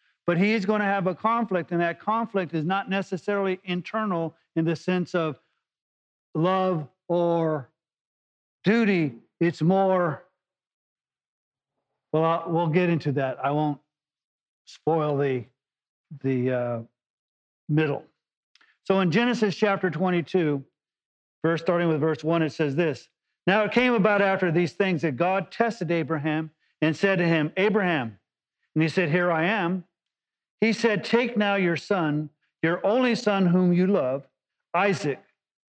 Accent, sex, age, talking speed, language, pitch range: American, male, 50-69, 145 wpm, English, 155-195 Hz